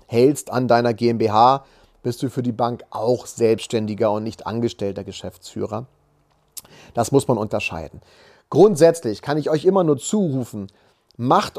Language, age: German, 30-49